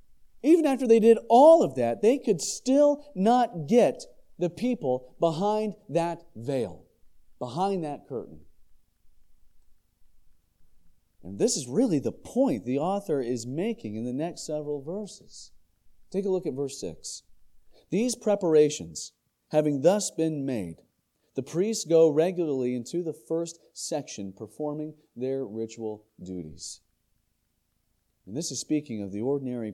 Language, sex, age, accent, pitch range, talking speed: English, male, 40-59, American, 105-165 Hz, 135 wpm